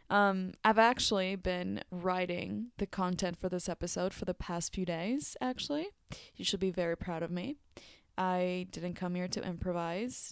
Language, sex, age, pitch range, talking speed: English, female, 20-39, 175-195 Hz, 170 wpm